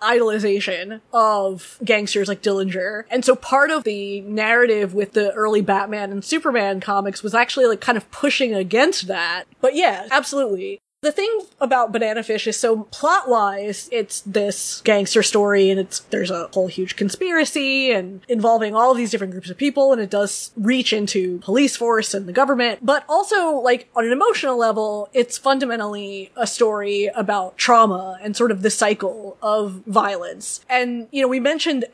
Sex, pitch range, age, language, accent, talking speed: female, 205-255 Hz, 20-39, English, American, 170 wpm